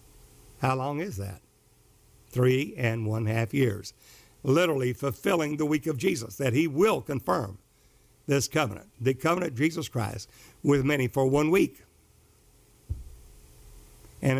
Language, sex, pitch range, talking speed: English, male, 115-155 Hz, 130 wpm